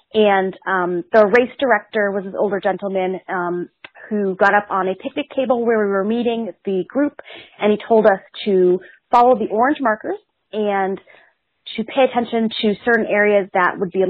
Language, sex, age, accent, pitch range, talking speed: English, female, 30-49, American, 190-240 Hz, 185 wpm